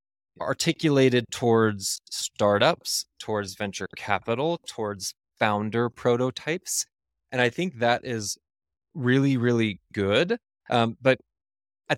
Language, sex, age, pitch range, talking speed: English, male, 20-39, 105-125 Hz, 100 wpm